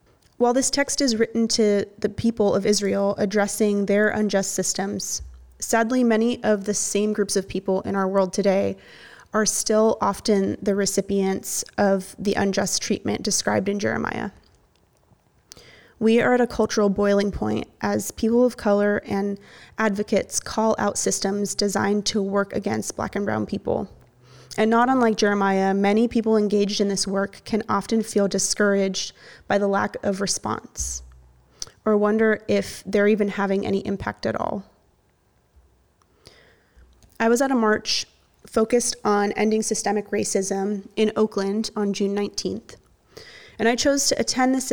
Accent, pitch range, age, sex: American, 195-220 Hz, 20-39, female